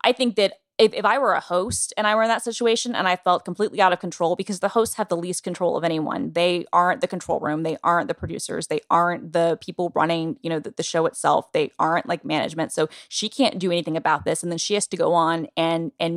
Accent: American